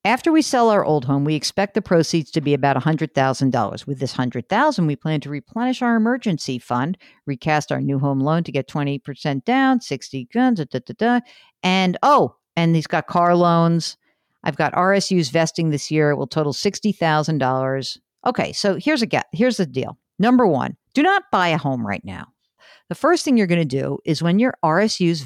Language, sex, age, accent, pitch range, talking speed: English, female, 50-69, American, 145-210 Hz, 215 wpm